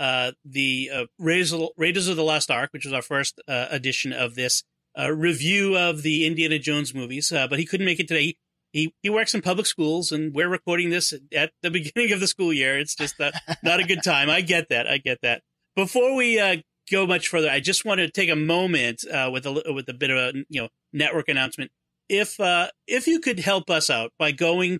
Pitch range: 145-180 Hz